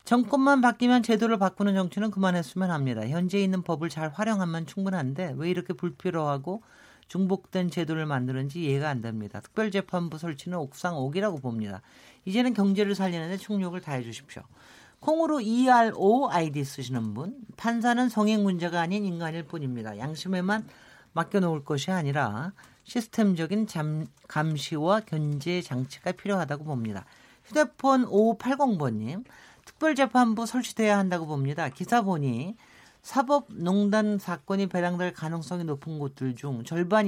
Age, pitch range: 50-69, 145-205 Hz